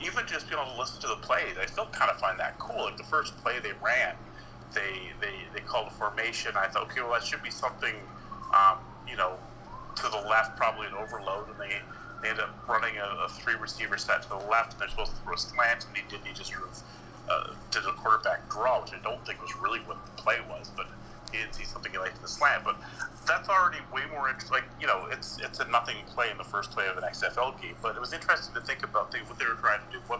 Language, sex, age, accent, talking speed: English, male, 40-59, American, 260 wpm